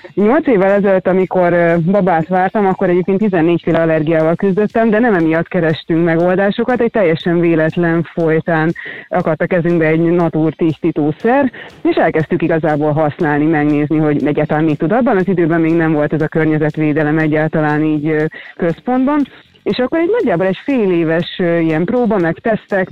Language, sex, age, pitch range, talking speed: Hungarian, female, 30-49, 160-200 Hz, 150 wpm